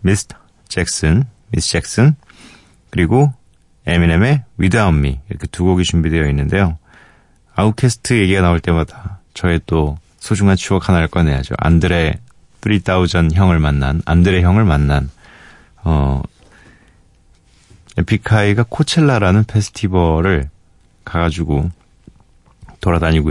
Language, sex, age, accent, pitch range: Korean, male, 40-59, native, 85-105 Hz